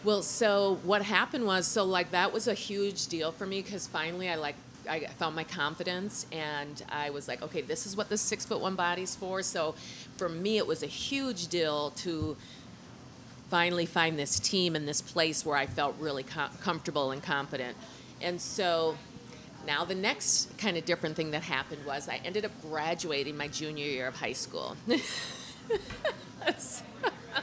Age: 40-59